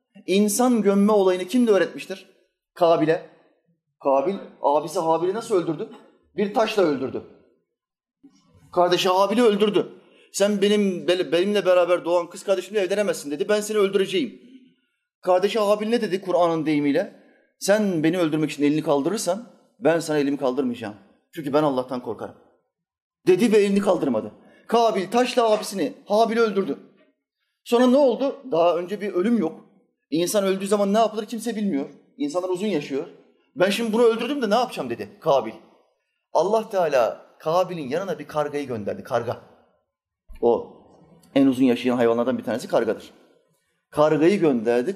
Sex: male